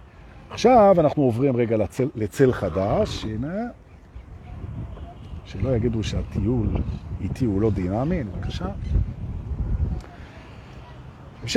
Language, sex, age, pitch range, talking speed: Hebrew, male, 50-69, 105-160 Hz, 90 wpm